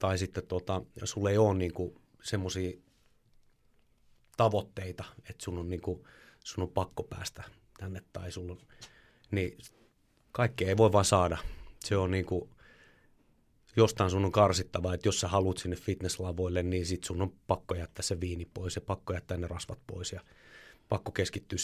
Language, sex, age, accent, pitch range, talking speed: Finnish, male, 30-49, native, 90-105 Hz, 165 wpm